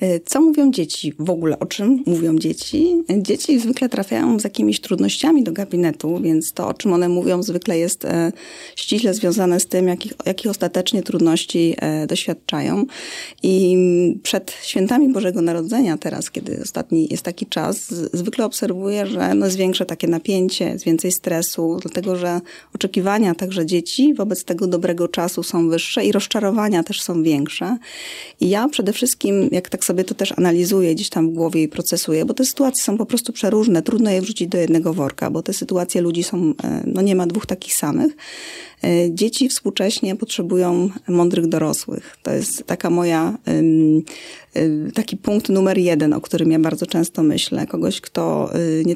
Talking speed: 165 wpm